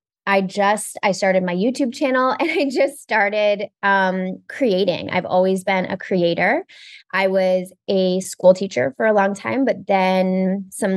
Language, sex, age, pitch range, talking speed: English, female, 20-39, 185-215 Hz, 165 wpm